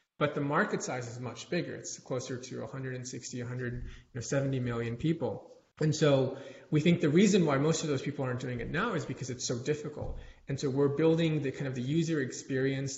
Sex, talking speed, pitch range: male, 205 wpm, 125-150 Hz